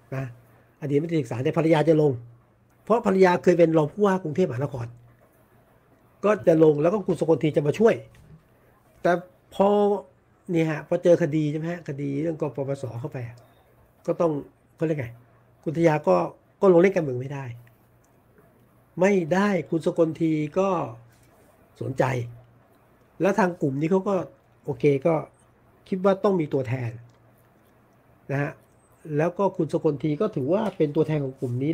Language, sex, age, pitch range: Thai, male, 60-79, 125-170 Hz